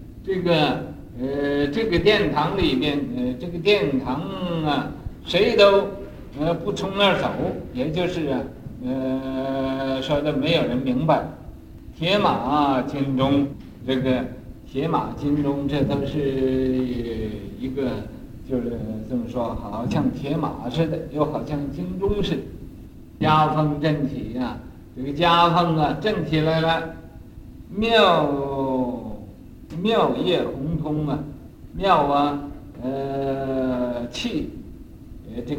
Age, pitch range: 50-69, 120-155 Hz